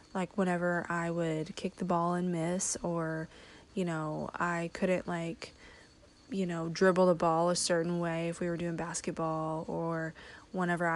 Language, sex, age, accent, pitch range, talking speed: English, female, 20-39, American, 170-190 Hz, 165 wpm